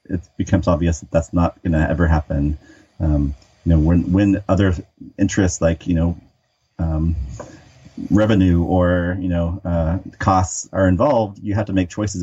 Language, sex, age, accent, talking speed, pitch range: English, male, 30-49, American, 160 wpm, 80-100 Hz